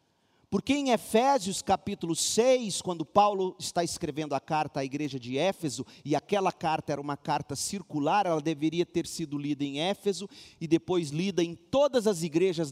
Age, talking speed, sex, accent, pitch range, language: 40-59, 170 wpm, male, Brazilian, 145-220 Hz, Portuguese